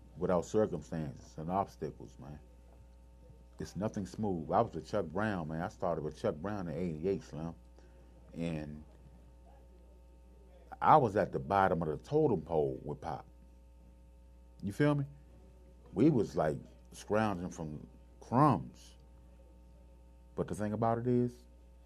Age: 40-59